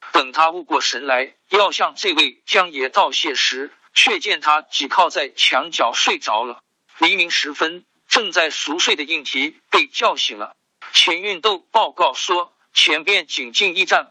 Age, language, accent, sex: 50-69, Chinese, native, male